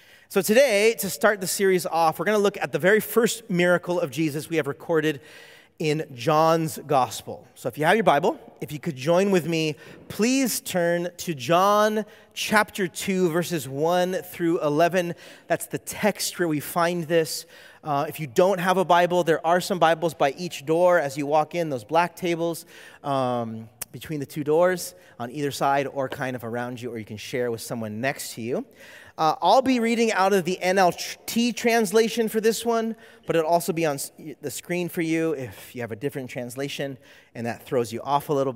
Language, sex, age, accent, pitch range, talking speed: English, male, 30-49, American, 140-185 Hz, 200 wpm